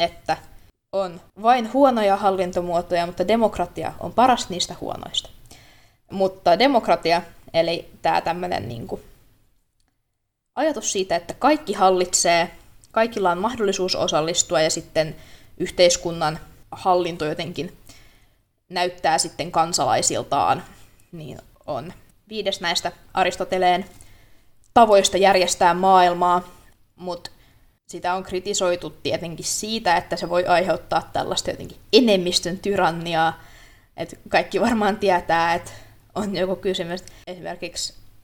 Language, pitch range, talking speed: Finnish, 165-195 Hz, 100 wpm